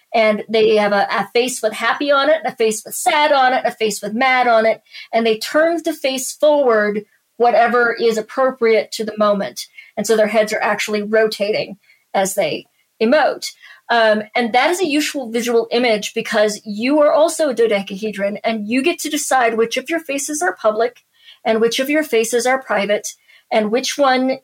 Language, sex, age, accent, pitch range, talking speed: English, female, 40-59, American, 215-265 Hz, 195 wpm